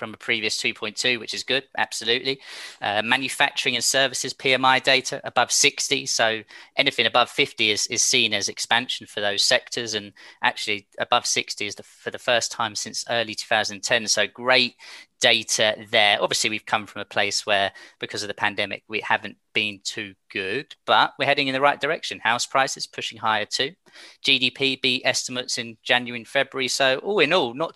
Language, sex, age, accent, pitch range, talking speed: English, male, 20-39, British, 115-145 Hz, 180 wpm